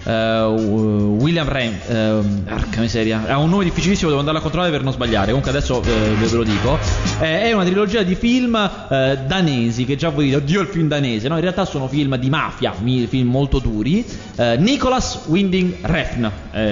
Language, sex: Italian, male